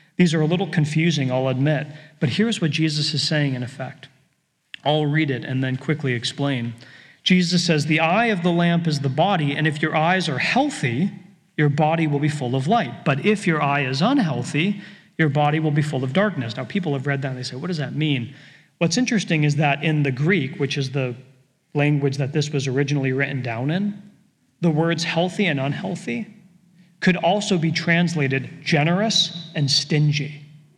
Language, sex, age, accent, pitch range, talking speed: English, male, 40-59, American, 140-175 Hz, 195 wpm